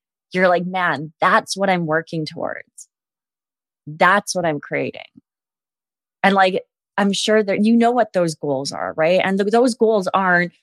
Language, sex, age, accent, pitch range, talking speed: English, female, 20-39, American, 155-185 Hz, 165 wpm